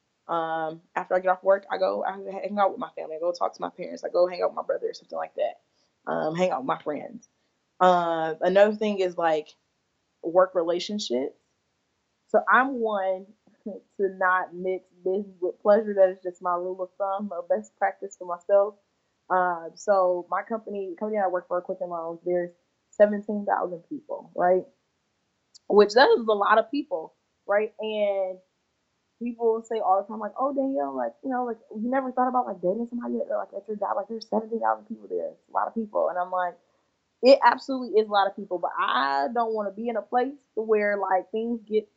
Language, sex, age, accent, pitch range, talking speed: English, female, 20-39, American, 180-220 Hz, 205 wpm